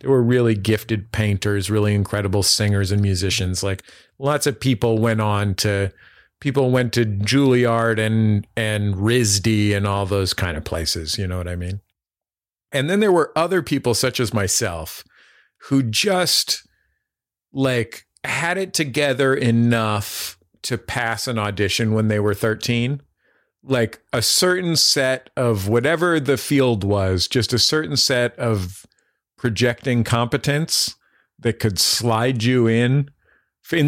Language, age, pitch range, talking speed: English, 40-59, 100-130 Hz, 145 wpm